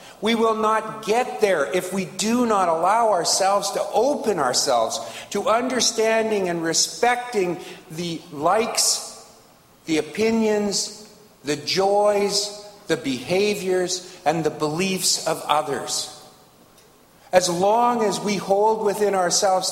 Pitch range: 175-220 Hz